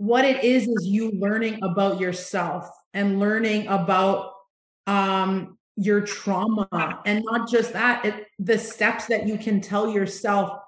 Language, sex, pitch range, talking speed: English, female, 195-235 Hz, 140 wpm